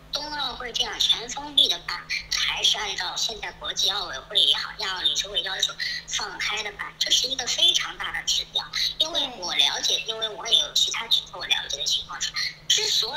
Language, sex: Chinese, male